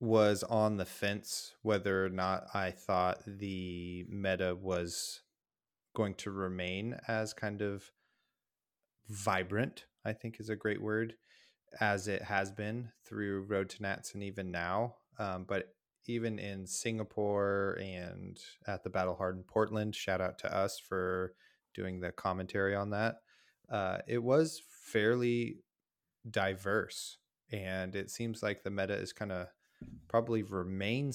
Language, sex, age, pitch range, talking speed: English, male, 20-39, 95-110 Hz, 145 wpm